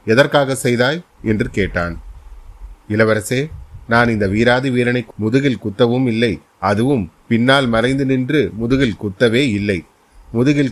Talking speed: 110 wpm